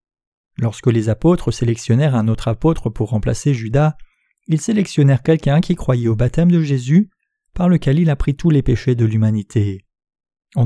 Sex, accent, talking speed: male, French, 165 wpm